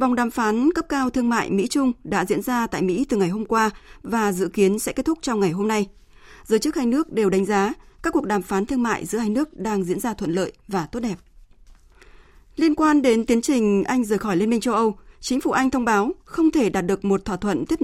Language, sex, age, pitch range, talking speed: Vietnamese, female, 20-39, 195-255 Hz, 255 wpm